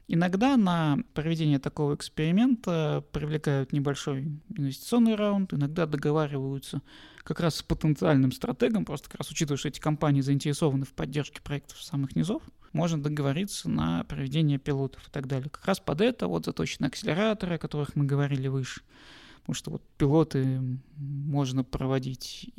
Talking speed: 150 wpm